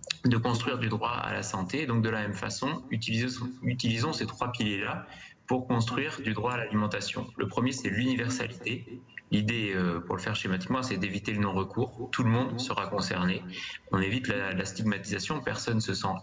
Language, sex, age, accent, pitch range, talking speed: French, male, 20-39, French, 100-125 Hz, 190 wpm